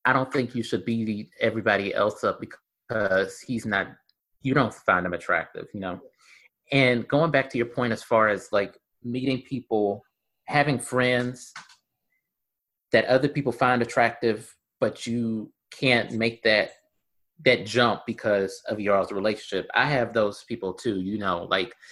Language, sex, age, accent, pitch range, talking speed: English, male, 30-49, American, 100-120 Hz, 155 wpm